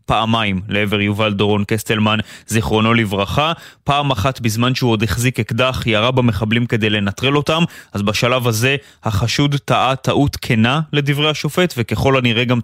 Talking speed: 145 wpm